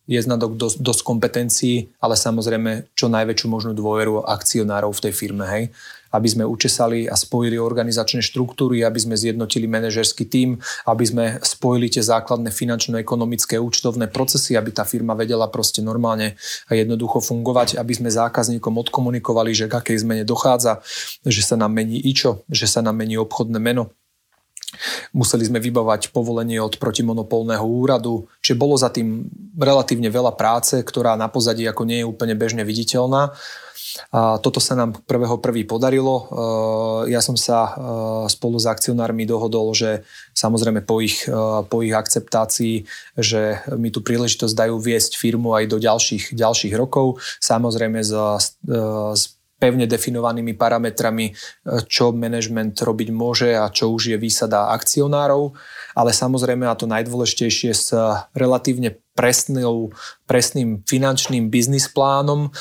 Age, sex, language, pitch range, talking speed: 30-49, male, Slovak, 110-120 Hz, 140 wpm